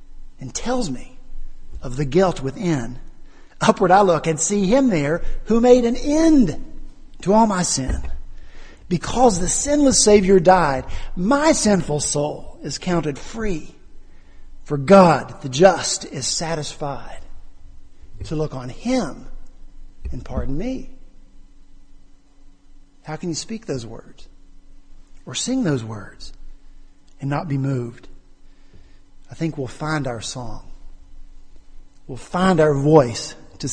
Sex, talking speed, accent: male, 125 wpm, American